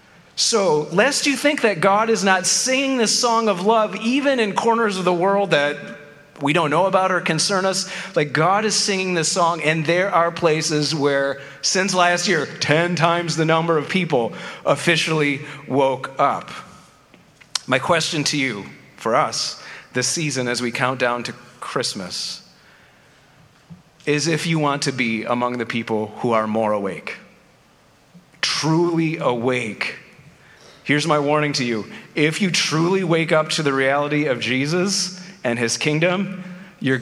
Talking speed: 160 wpm